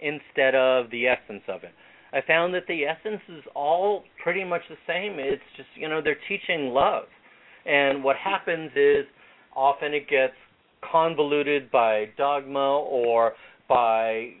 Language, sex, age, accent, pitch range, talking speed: English, male, 40-59, American, 130-175 Hz, 150 wpm